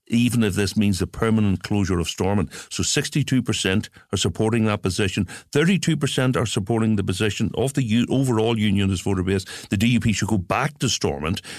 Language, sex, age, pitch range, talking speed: English, male, 60-79, 90-110 Hz, 170 wpm